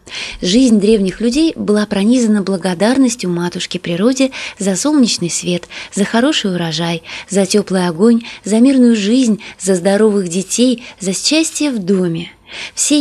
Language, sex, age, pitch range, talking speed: Russian, female, 20-39, 185-235 Hz, 130 wpm